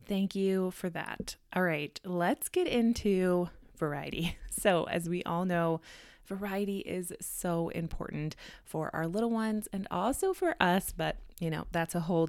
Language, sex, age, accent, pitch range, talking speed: English, female, 20-39, American, 165-215 Hz, 160 wpm